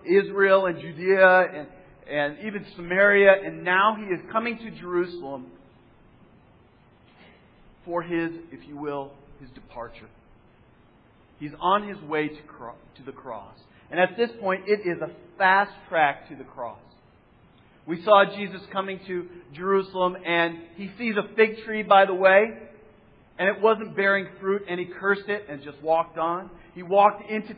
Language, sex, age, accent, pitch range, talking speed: English, male, 40-59, American, 175-210 Hz, 155 wpm